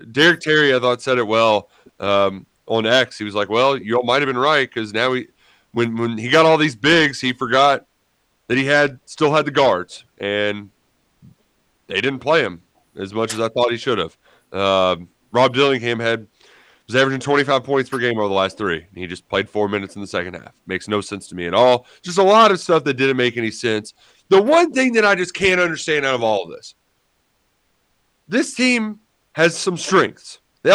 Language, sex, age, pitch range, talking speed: English, male, 30-49, 125-210 Hz, 215 wpm